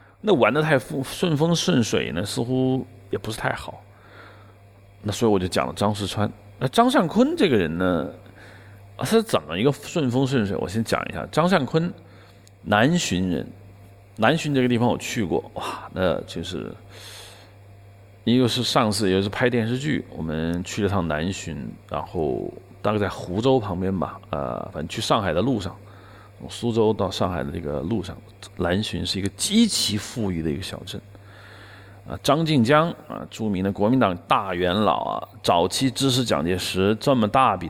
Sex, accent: male, native